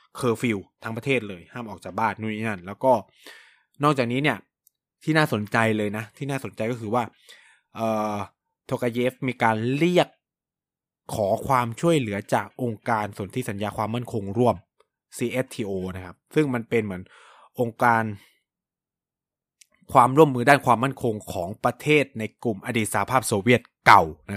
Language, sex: Thai, male